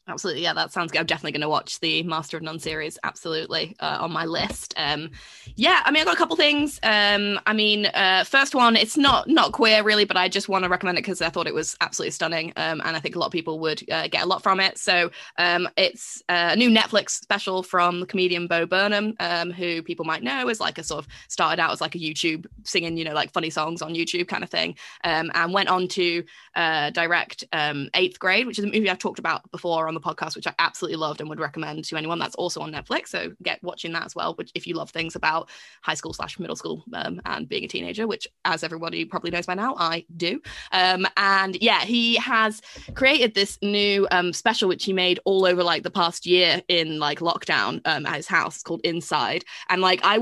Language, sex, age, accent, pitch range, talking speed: English, female, 20-39, British, 165-200 Hz, 245 wpm